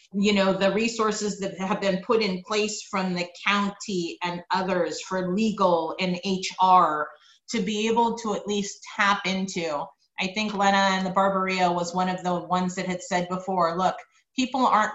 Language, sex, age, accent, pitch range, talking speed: English, female, 30-49, American, 175-210 Hz, 180 wpm